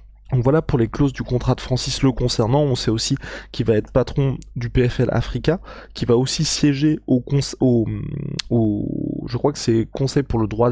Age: 20-39